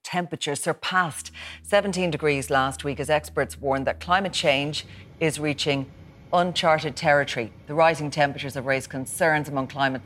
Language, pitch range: English, 130-155 Hz